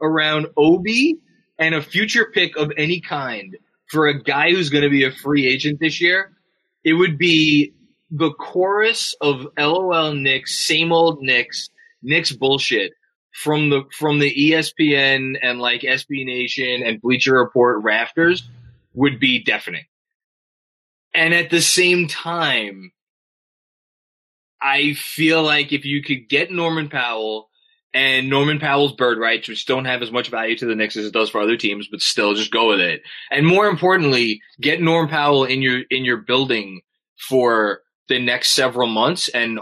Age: 20-39